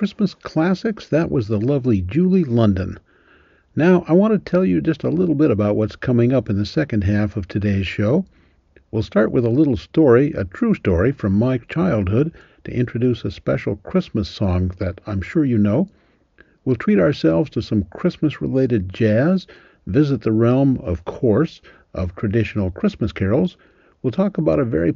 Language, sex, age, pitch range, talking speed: English, male, 60-79, 105-160 Hz, 175 wpm